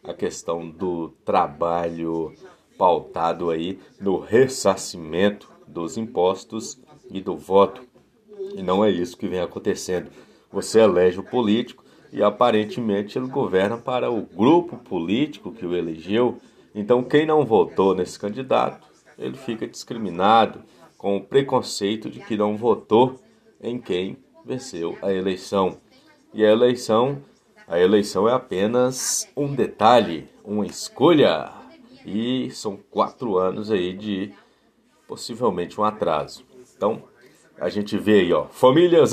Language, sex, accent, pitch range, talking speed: Portuguese, male, Brazilian, 95-125 Hz, 125 wpm